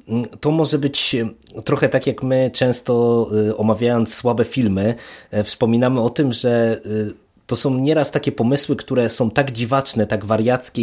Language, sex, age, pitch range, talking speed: Polish, male, 20-39, 115-155 Hz, 145 wpm